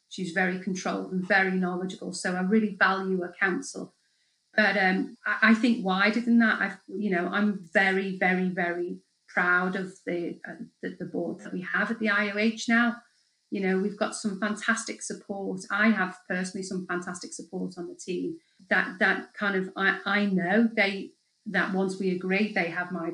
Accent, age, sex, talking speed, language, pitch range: British, 40-59, female, 185 wpm, English, 180-210 Hz